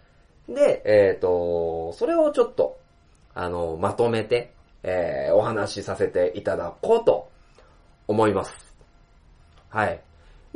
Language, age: Japanese, 20-39